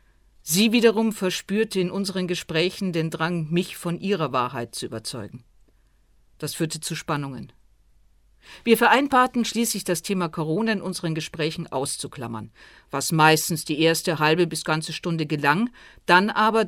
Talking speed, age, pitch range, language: 140 wpm, 50-69, 155-200 Hz, German